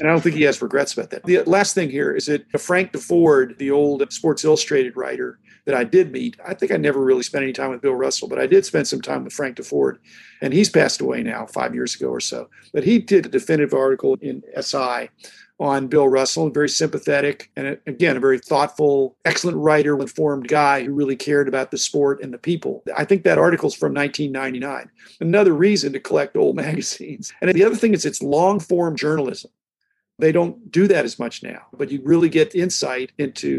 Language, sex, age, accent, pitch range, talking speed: English, male, 50-69, American, 140-200 Hz, 215 wpm